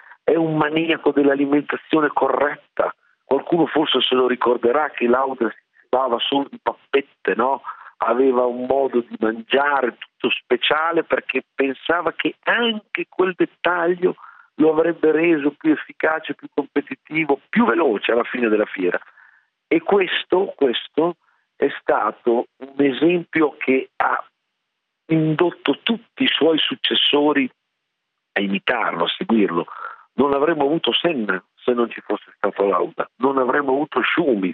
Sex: male